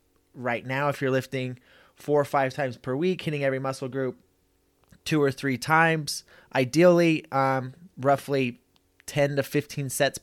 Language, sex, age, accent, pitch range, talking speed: English, male, 20-39, American, 115-145 Hz, 155 wpm